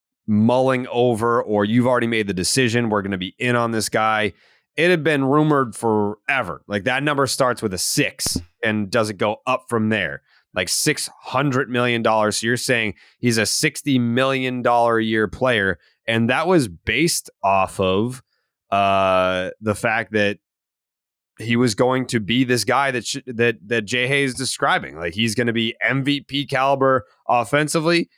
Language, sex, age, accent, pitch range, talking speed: English, male, 20-39, American, 110-140 Hz, 175 wpm